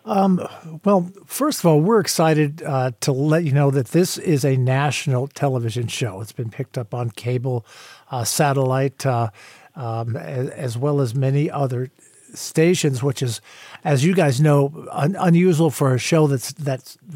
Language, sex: English, male